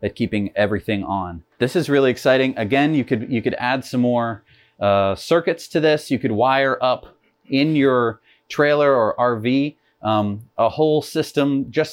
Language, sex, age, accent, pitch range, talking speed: English, male, 30-49, American, 115-140 Hz, 170 wpm